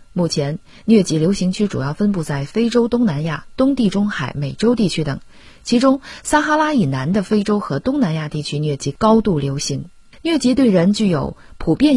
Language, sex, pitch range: Chinese, female, 150-205 Hz